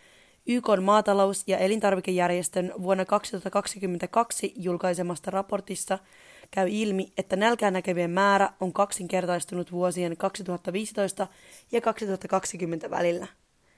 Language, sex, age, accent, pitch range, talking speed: Finnish, female, 20-39, native, 180-205 Hz, 90 wpm